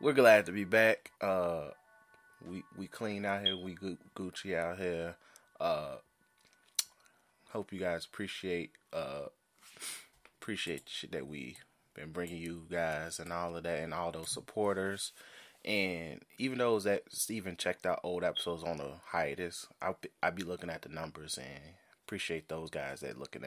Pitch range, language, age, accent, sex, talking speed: 85-105 Hz, English, 20-39, American, male, 160 wpm